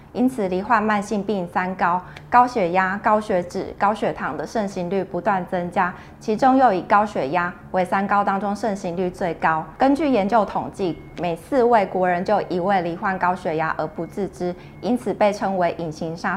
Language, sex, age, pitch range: Chinese, female, 20-39, 180-225 Hz